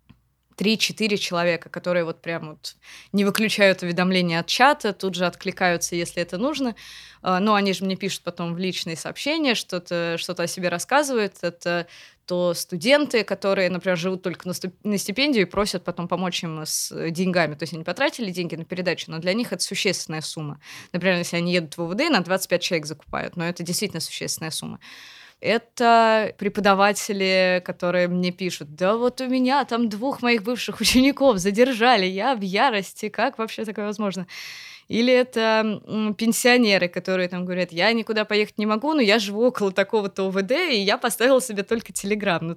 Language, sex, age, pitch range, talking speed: Russian, female, 20-39, 175-215 Hz, 170 wpm